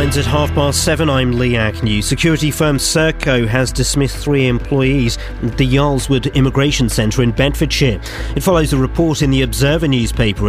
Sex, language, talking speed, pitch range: male, English, 165 wpm, 105-135 Hz